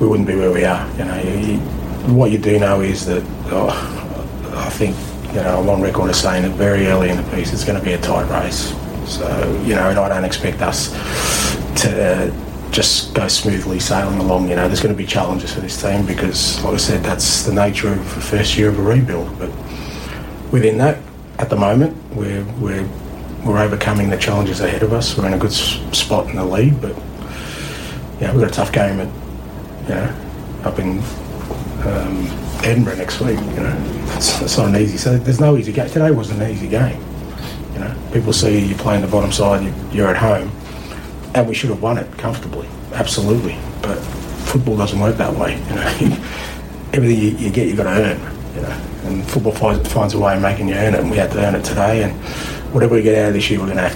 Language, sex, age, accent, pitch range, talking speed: English, male, 30-49, Australian, 90-110 Hz, 220 wpm